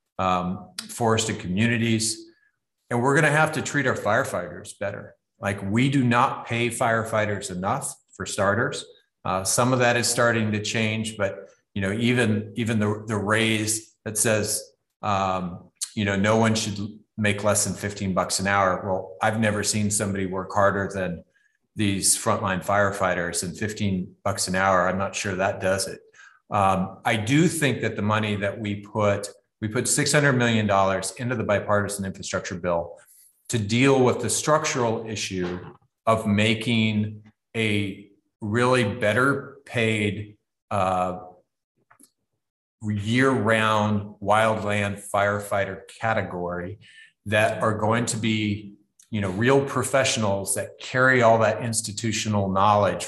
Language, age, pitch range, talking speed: English, 40-59, 100-115 Hz, 145 wpm